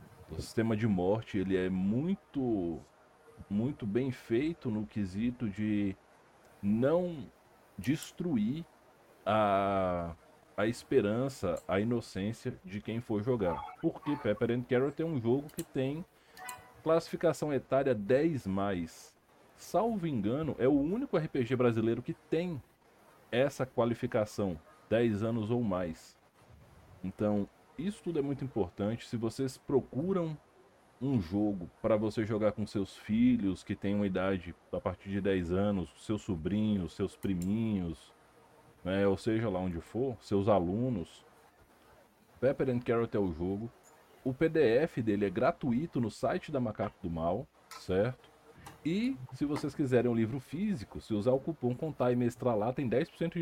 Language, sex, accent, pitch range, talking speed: Portuguese, male, Brazilian, 100-150 Hz, 140 wpm